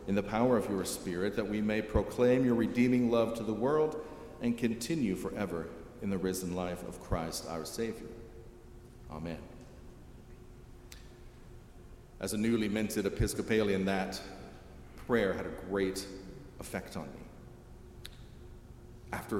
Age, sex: 40-59, male